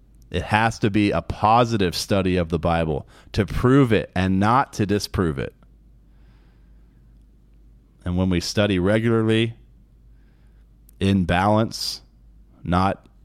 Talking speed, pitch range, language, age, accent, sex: 120 wpm, 90-115 Hz, English, 30-49, American, male